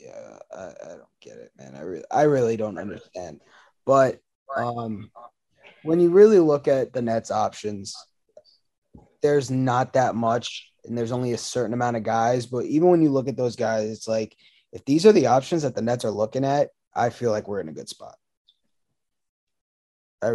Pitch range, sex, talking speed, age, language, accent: 115-145 Hz, male, 190 wpm, 20-39, English, American